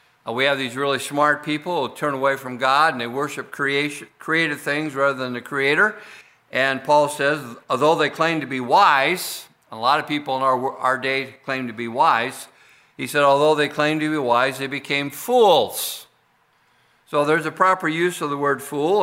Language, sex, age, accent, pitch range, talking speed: English, male, 50-69, American, 120-145 Hz, 200 wpm